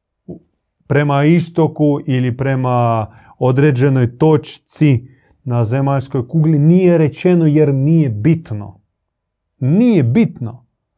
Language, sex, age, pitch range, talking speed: Croatian, male, 40-59, 105-150 Hz, 85 wpm